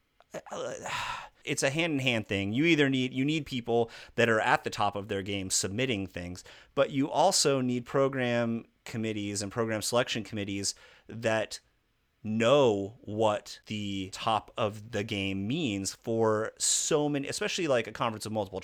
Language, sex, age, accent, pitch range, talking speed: English, male, 30-49, American, 105-145 Hz, 155 wpm